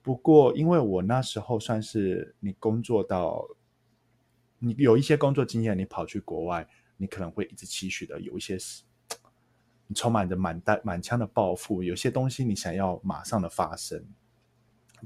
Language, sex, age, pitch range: Chinese, male, 20-39, 90-115 Hz